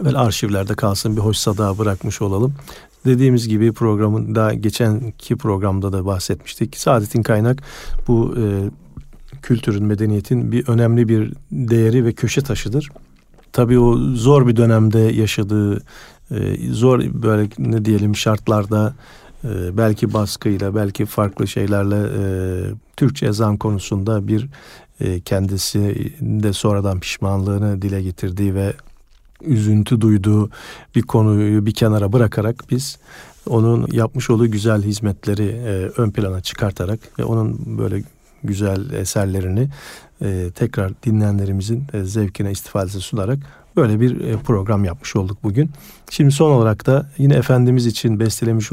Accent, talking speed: native, 125 wpm